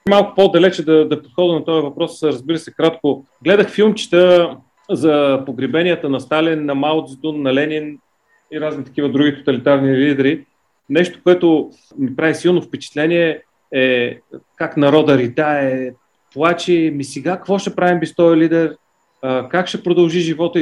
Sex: male